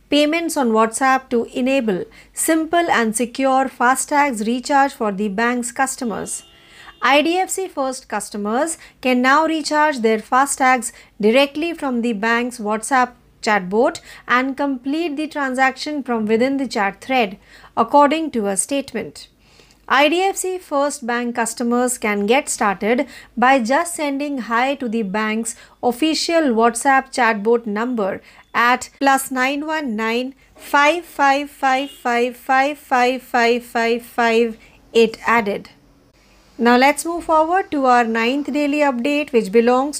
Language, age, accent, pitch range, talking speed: Marathi, 50-69, native, 230-285 Hz, 115 wpm